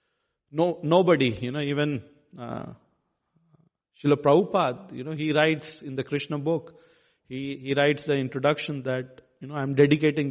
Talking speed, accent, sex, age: 150 wpm, Indian, male, 40-59